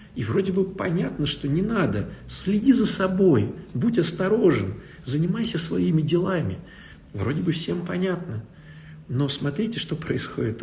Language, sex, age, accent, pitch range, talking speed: Russian, male, 50-69, native, 125-185 Hz, 130 wpm